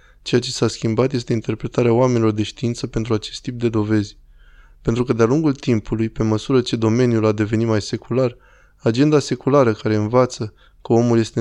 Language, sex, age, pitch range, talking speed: Romanian, male, 20-39, 110-125 Hz, 180 wpm